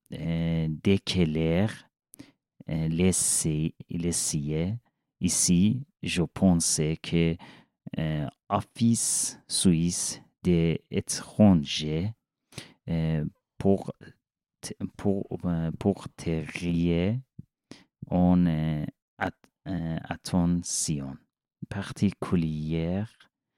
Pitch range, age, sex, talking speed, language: 80-95 Hz, 40-59, male, 65 wpm, French